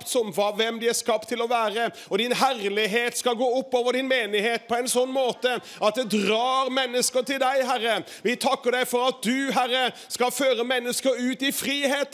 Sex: male